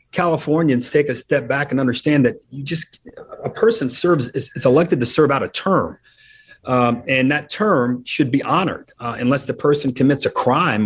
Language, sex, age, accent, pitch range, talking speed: English, male, 40-59, American, 120-145 Hz, 195 wpm